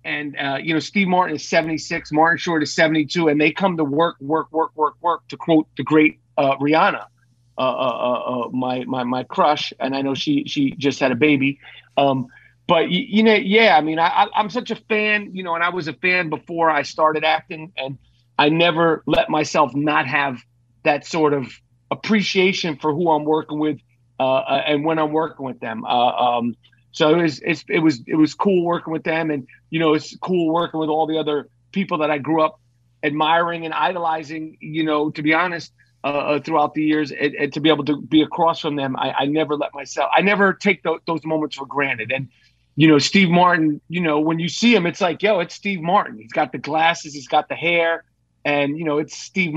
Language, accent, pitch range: English, American, 145-170 Hz